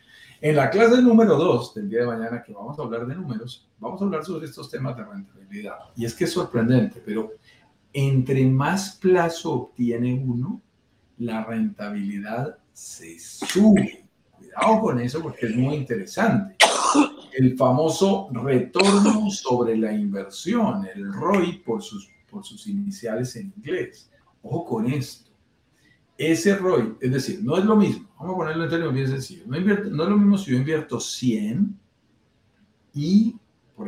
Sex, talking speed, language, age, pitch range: male, 160 wpm, Spanish, 50-69, 120-200 Hz